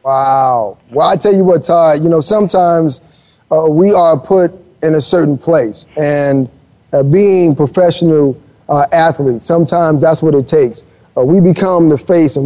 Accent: American